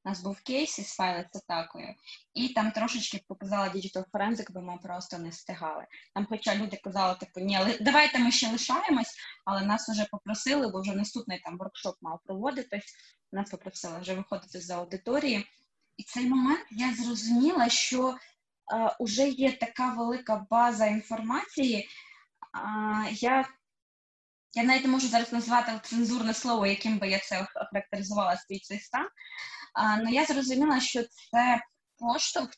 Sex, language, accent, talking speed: female, Ukrainian, native, 150 wpm